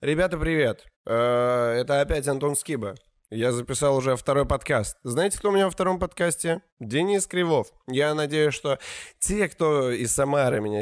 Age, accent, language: 20-39, native, Russian